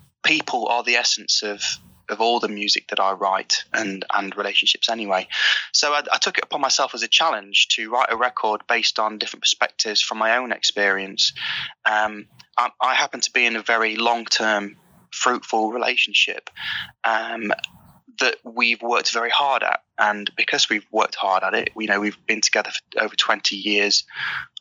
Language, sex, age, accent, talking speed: English, male, 20-39, British, 180 wpm